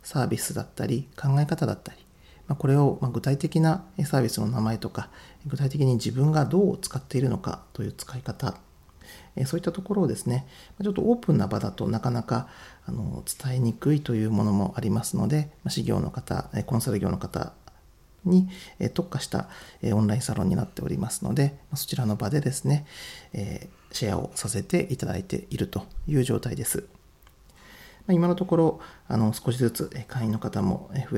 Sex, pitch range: male, 110-155 Hz